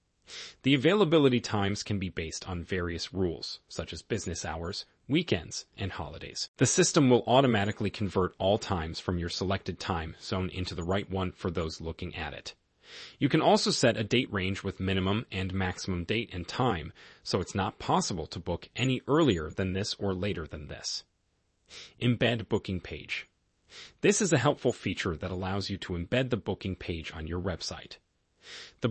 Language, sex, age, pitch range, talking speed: English, male, 30-49, 90-115 Hz, 175 wpm